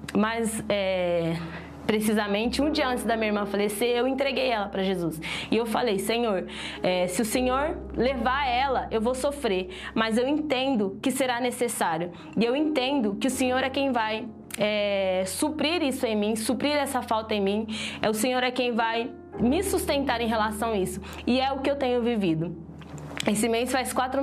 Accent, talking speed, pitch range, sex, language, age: Brazilian, 180 wpm, 210-260 Hz, female, Portuguese, 20-39